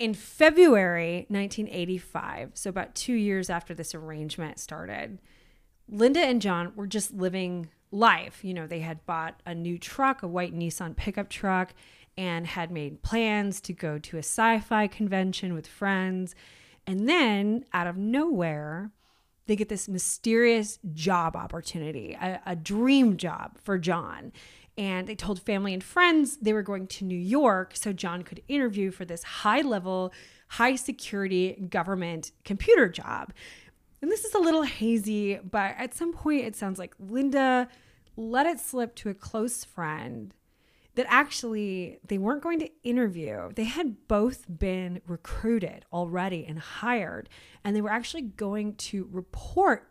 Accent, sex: American, female